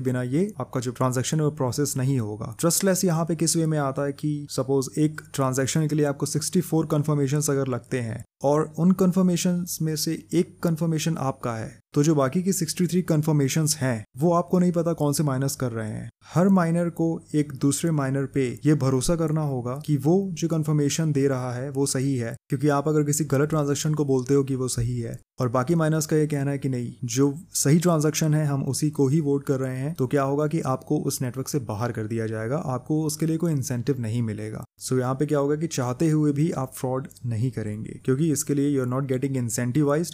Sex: male